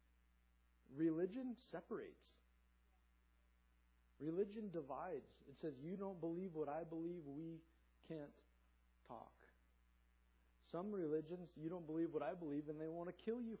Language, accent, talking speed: English, American, 130 wpm